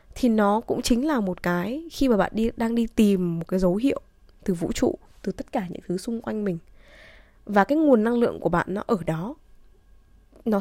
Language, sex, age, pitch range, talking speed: Vietnamese, female, 20-39, 175-245 Hz, 225 wpm